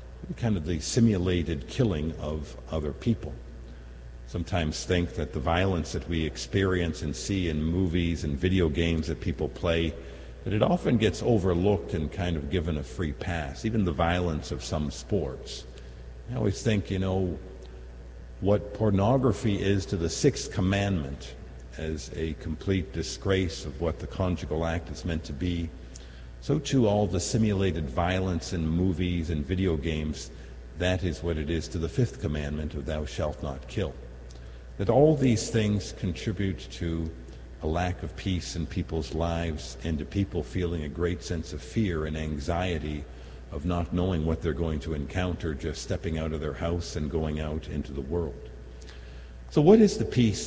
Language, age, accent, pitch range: English, 50-69, American, 75-95 Hz